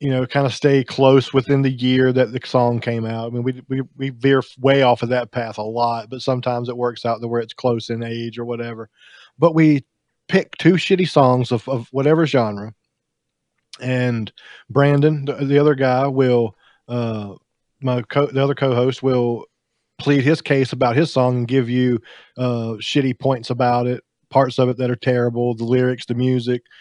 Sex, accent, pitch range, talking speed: male, American, 120-135 Hz, 200 wpm